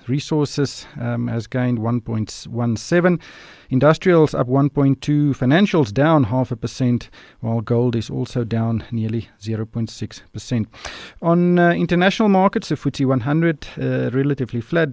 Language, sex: English, male